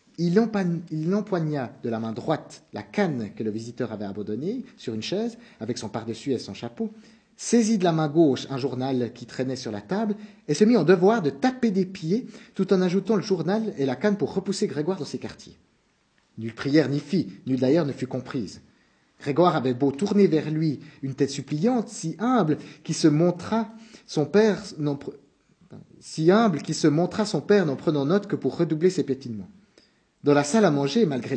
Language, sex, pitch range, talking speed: French, male, 135-200 Hz, 195 wpm